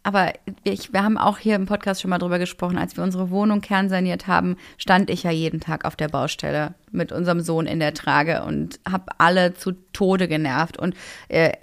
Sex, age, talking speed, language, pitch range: female, 30-49, 200 wpm, German, 170-210 Hz